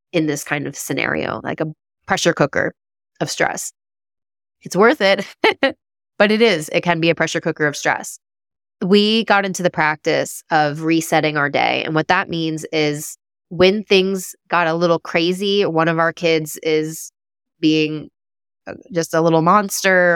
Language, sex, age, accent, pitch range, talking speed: English, female, 20-39, American, 160-205 Hz, 165 wpm